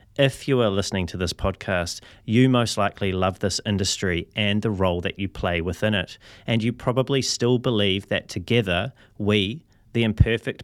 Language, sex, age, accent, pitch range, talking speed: English, male, 30-49, Australian, 95-115 Hz, 175 wpm